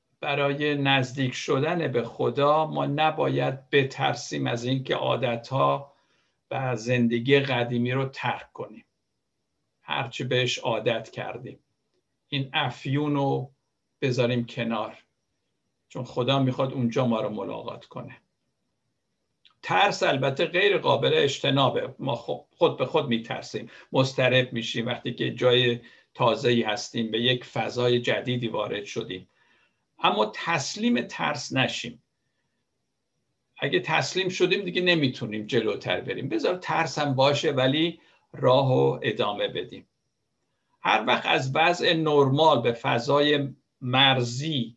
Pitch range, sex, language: 120-145 Hz, male, Persian